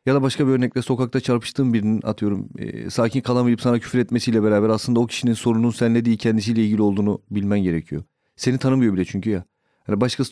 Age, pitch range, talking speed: 40-59, 105-130 Hz, 200 wpm